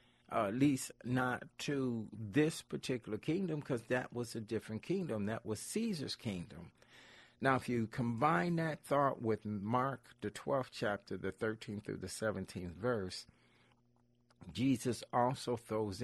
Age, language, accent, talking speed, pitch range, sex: 50-69, English, American, 140 wpm, 100-125 Hz, male